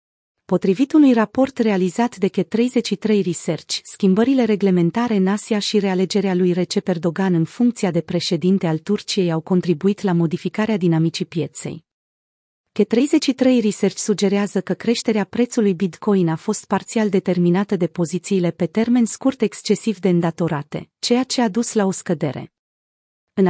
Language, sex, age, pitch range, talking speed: Romanian, female, 30-49, 180-220 Hz, 140 wpm